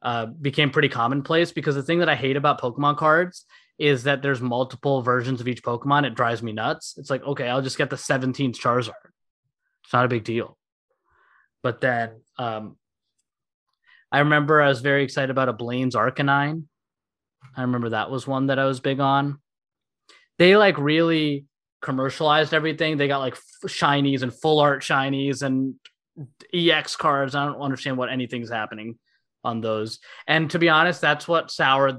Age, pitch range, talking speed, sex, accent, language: 20-39, 125-145 Hz, 175 wpm, male, American, English